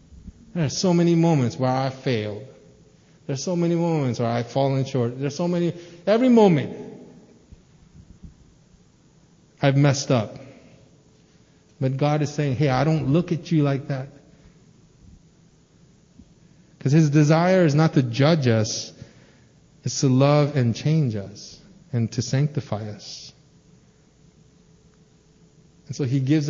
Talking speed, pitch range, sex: 130 wpm, 135-225 Hz, male